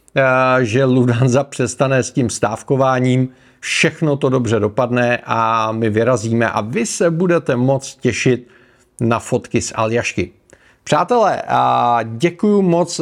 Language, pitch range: Czech, 125-160 Hz